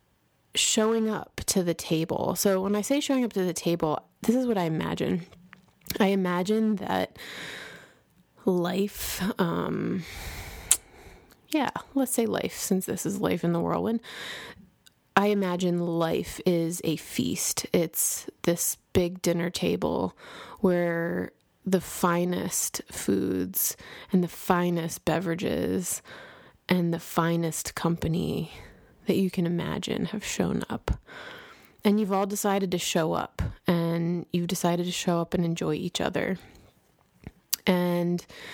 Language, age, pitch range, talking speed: English, 20-39, 170-200 Hz, 130 wpm